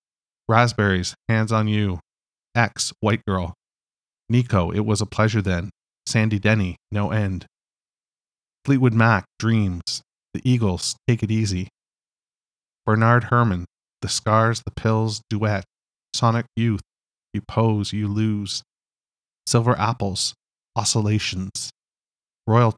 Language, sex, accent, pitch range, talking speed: English, male, American, 100-120 Hz, 110 wpm